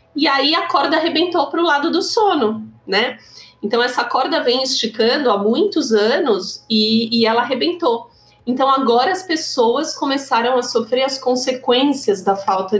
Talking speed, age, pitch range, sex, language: 160 wpm, 30-49, 210-295 Hz, female, Portuguese